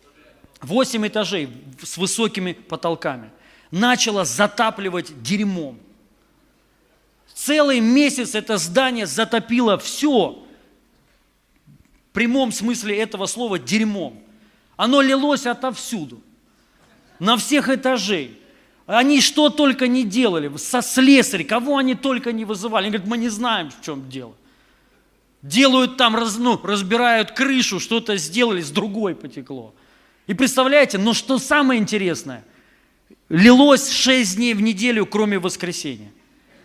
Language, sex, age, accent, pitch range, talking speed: Russian, male, 40-59, native, 170-240 Hz, 110 wpm